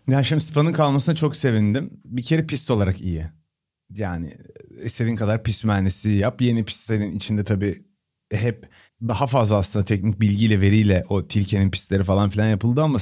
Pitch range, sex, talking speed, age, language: 105-130 Hz, male, 160 wpm, 30-49, Turkish